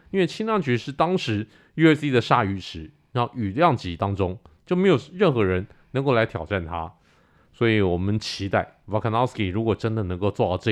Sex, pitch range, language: male, 100-150 Hz, Chinese